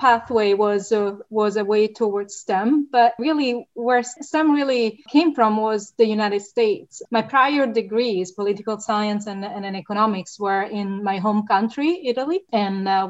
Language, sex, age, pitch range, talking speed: English, female, 30-49, 200-235 Hz, 165 wpm